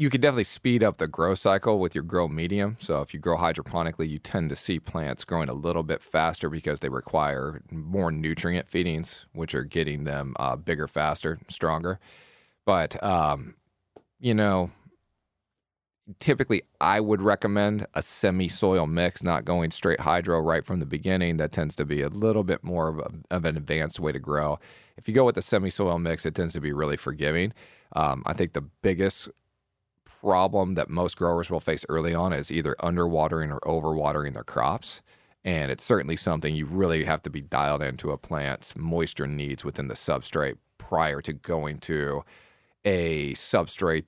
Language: English